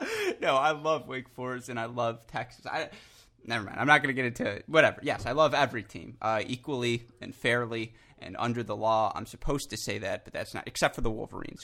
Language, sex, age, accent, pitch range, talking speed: English, male, 20-39, American, 110-135 Hz, 230 wpm